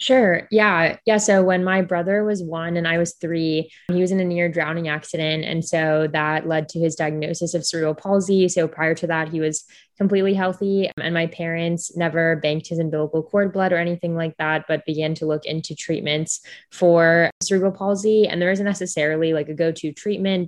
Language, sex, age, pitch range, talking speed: English, female, 20-39, 155-175 Hz, 200 wpm